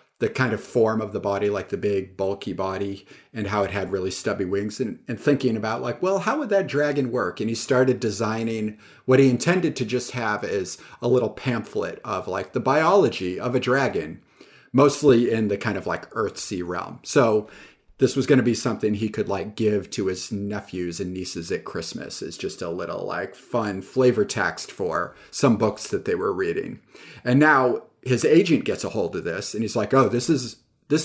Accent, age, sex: American, 40-59, male